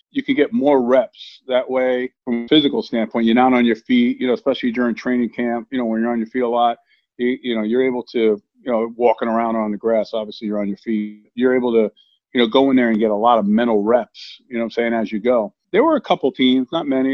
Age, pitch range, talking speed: 50-69, 110-130 Hz, 275 wpm